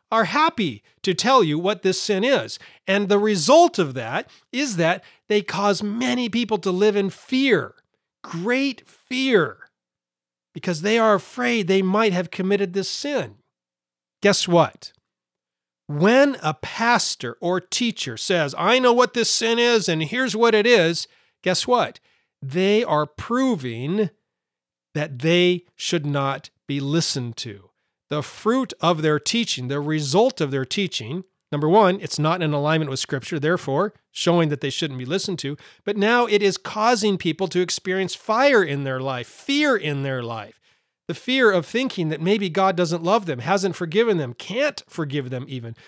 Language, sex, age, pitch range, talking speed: English, male, 40-59, 150-215 Hz, 165 wpm